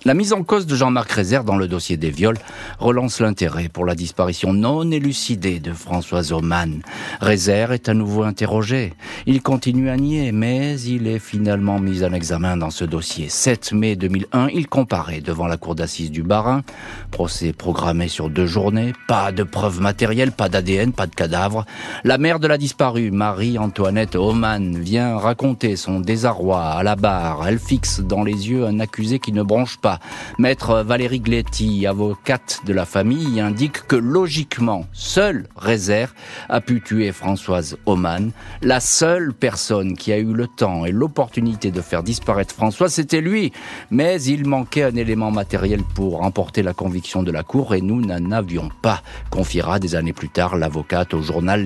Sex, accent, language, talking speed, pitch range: male, French, French, 175 wpm, 90-120 Hz